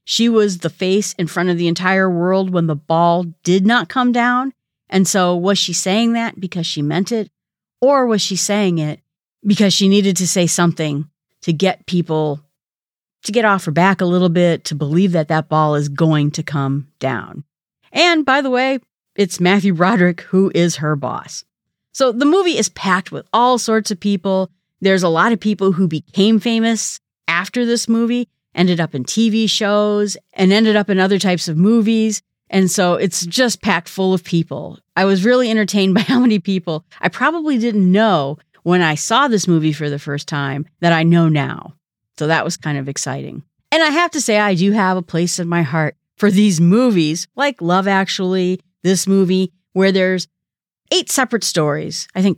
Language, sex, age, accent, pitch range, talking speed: English, female, 40-59, American, 165-210 Hz, 195 wpm